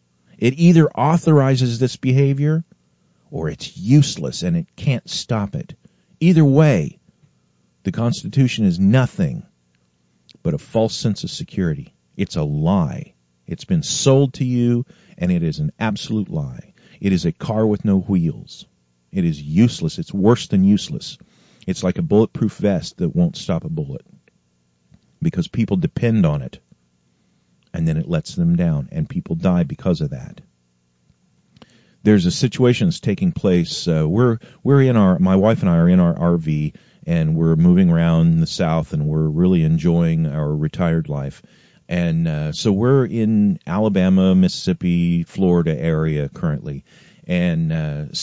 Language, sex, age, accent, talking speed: English, male, 50-69, American, 155 wpm